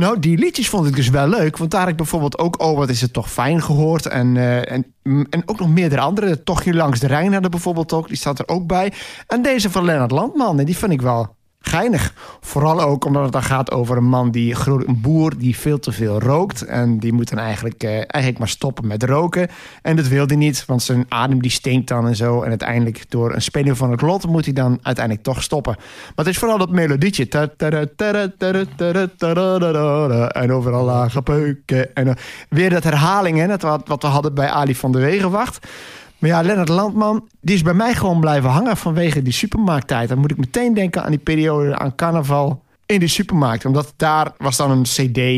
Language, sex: Dutch, male